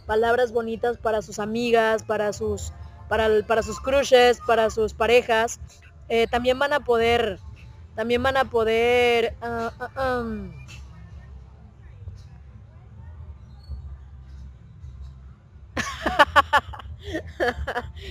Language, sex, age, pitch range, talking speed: Spanish, female, 20-39, 220-260 Hz, 85 wpm